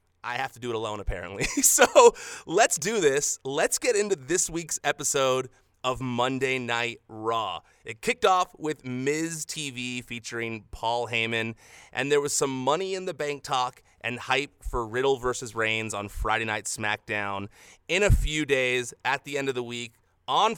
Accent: American